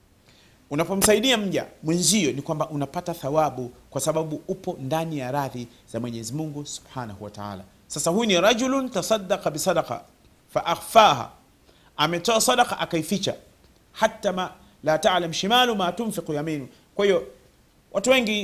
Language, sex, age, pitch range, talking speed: Swahili, male, 40-59, 140-200 Hz, 115 wpm